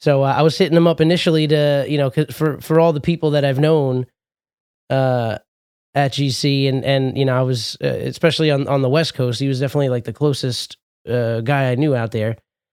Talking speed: 220 wpm